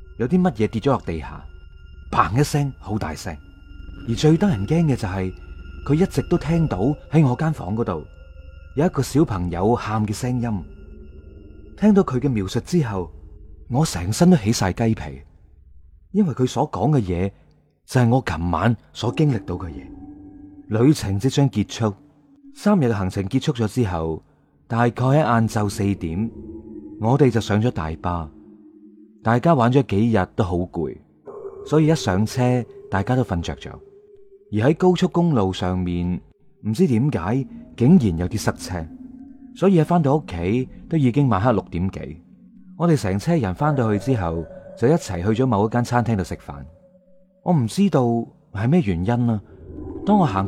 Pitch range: 95-155 Hz